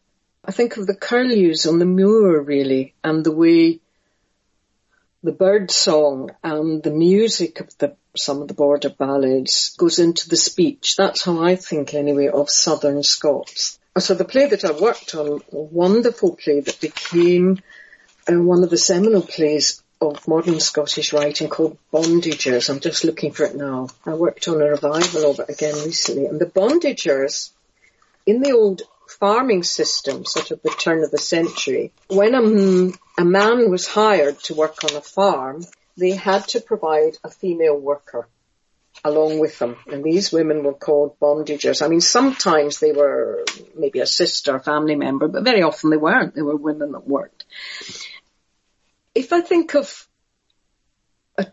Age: 60-79